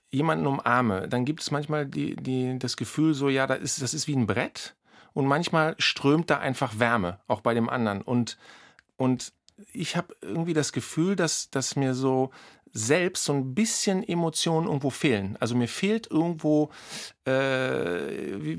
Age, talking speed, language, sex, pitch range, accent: 50-69, 170 wpm, German, male, 120-155 Hz, German